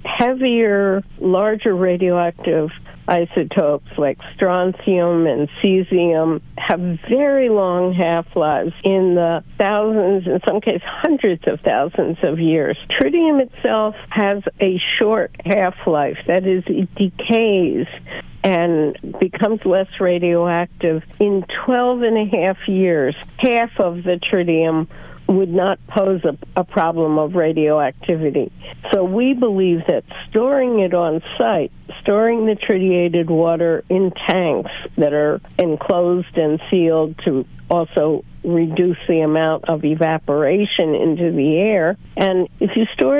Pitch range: 170-205 Hz